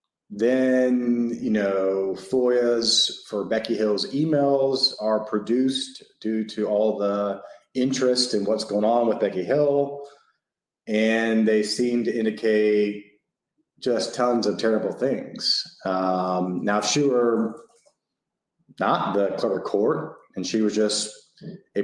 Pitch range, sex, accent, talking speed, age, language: 105-125 Hz, male, American, 125 wpm, 30-49, English